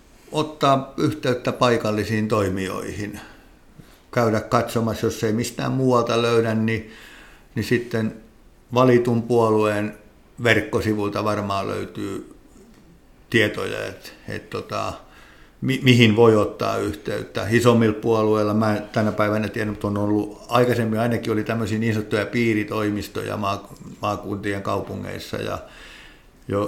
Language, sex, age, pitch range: Finnish, male, 60-79, 105-115 Hz